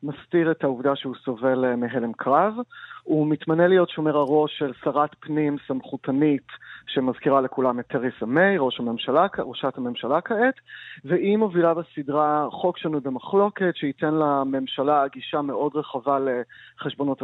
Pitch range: 135-175 Hz